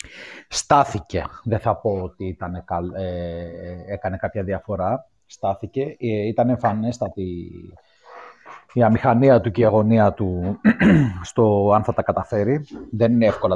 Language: Greek